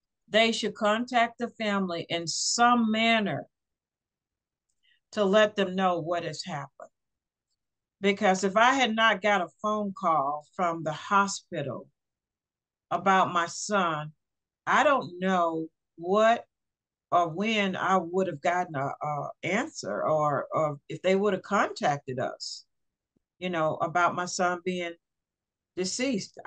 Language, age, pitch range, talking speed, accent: English, 50-69, 175-210 Hz, 130 wpm, American